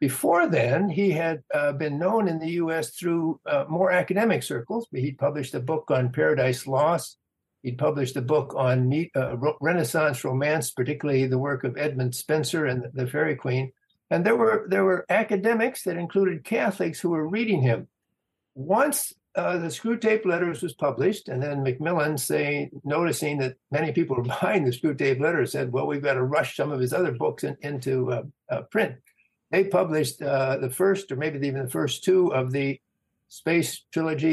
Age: 60-79